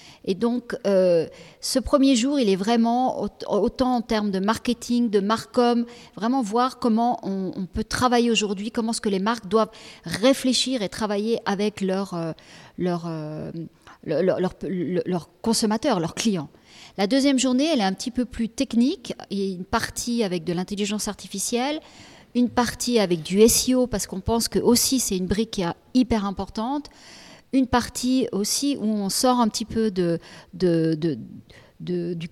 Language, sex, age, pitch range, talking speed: French, female, 40-59, 190-240 Hz, 170 wpm